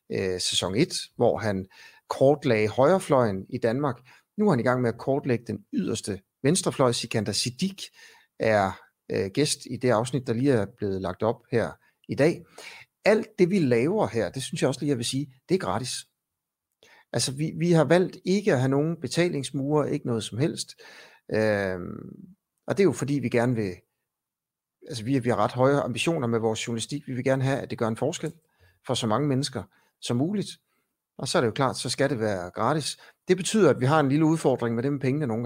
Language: Danish